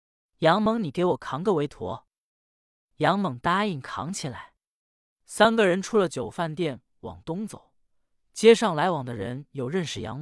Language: Chinese